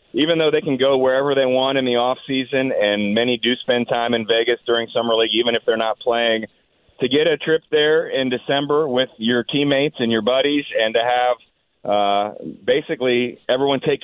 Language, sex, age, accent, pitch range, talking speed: English, male, 30-49, American, 115-140 Hz, 200 wpm